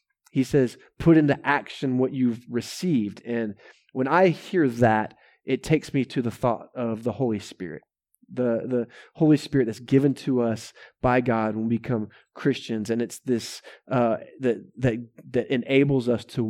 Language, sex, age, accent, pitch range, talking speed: English, male, 20-39, American, 120-145 Hz, 165 wpm